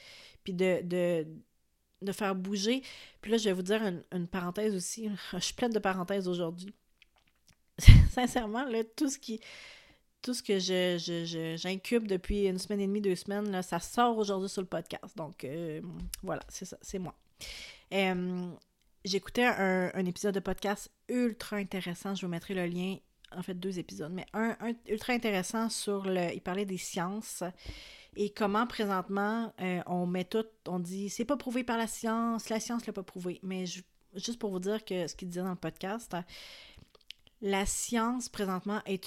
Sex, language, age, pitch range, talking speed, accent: female, French, 30-49, 180-210 Hz, 190 wpm, Canadian